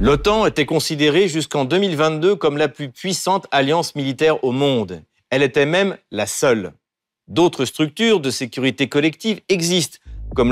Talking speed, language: 145 wpm, French